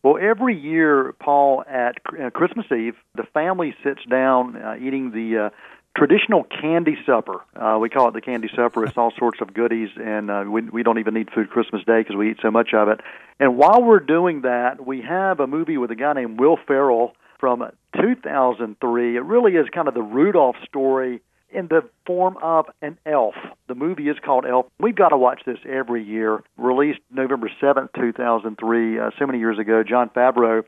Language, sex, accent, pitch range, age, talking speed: English, male, American, 115-145 Hz, 50-69, 200 wpm